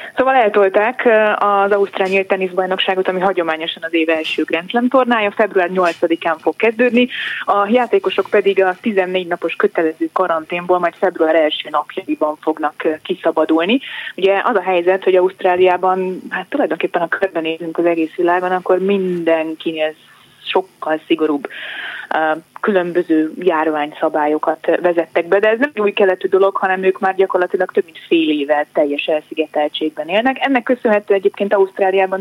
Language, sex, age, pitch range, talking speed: Hungarian, female, 20-39, 165-200 Hz, 135 wpm